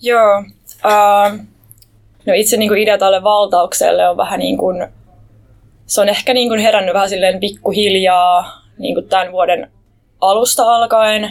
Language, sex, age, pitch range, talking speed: Finnish, female, 20-39, 170-215 Hz, 125 wpm